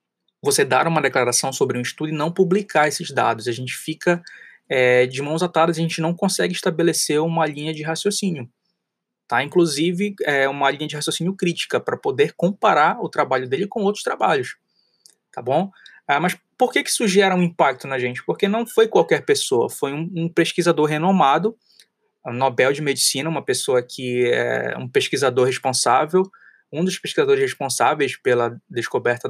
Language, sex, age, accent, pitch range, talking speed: Portuguese, male, 20-39, Brazilian, 140-195 Hz, 160 wpm